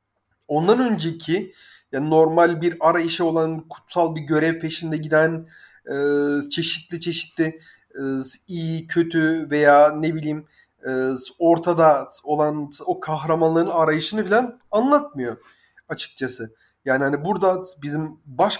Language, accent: Turkish, native